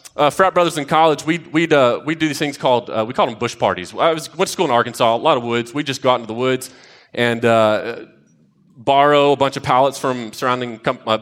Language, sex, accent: English, male, American